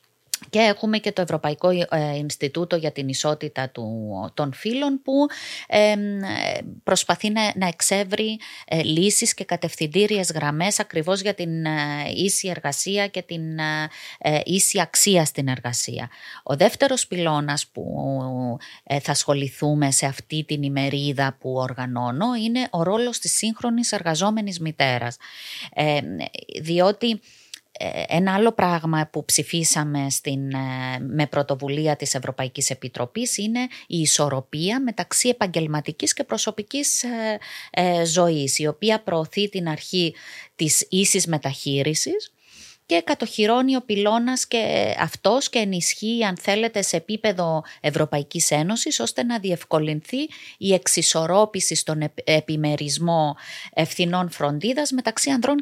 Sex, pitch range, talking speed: female, 150-210 Hz, 120 wpm